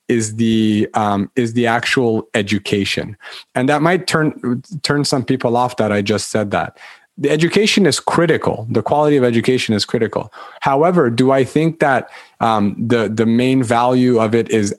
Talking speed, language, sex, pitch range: 175 wpm, English, male, 115-150 Hz